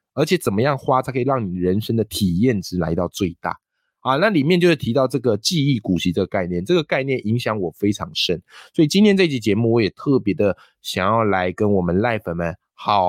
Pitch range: 95-145 Hz